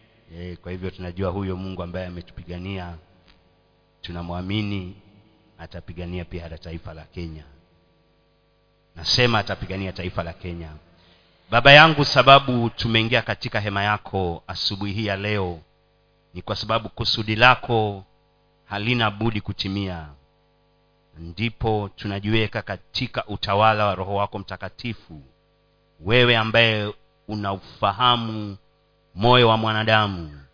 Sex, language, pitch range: male, Swahili, 90-115 Hz